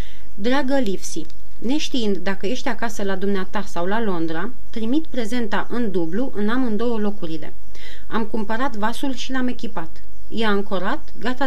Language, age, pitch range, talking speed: Romanian, 30-49, 190-250 Hz, 140 wpm